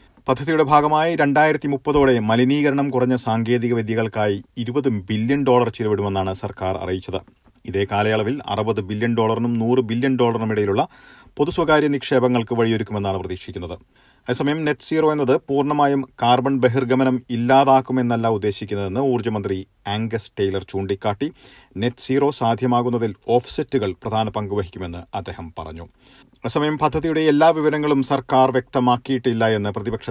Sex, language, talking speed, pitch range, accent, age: male, Malayalam, 110 wpm, 100-130 Hz, native, 40-59